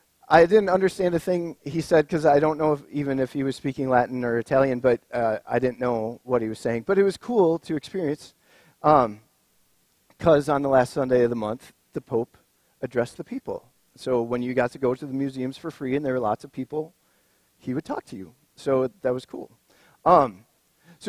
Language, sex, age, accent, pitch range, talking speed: English, male, 40-59, American, 125-170 Hz, 220 wpm